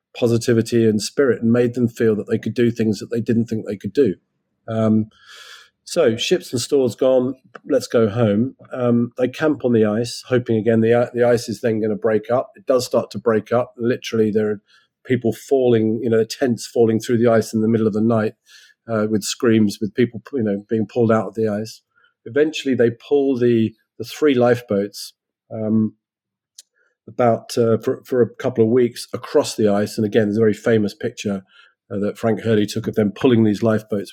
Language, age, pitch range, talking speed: English, 40-59, 105-120 Hz, 205 wpm